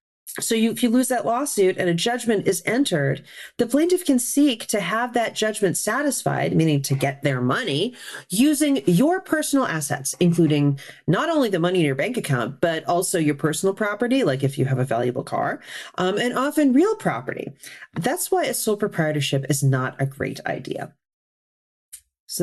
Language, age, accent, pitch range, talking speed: English, 40-59, American, 150-240 Hz, 175 wpm